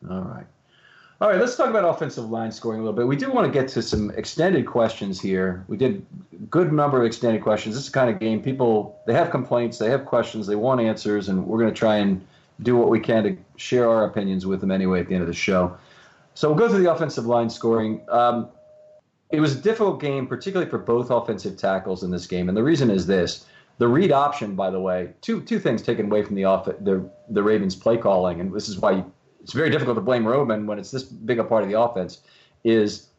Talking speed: 245 wpm